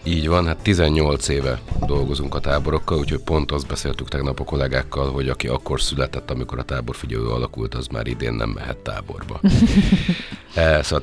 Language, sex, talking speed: Hungarian, male, 170 wpm